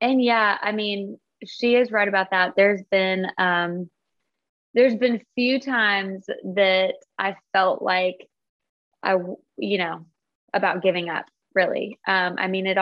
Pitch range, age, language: 185-215 Hz, 20-39, English